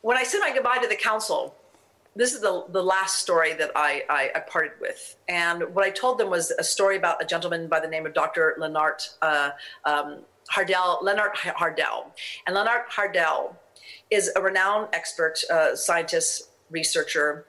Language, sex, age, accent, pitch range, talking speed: English, female, 40-59, American, 165-215 Hz, 180 wpm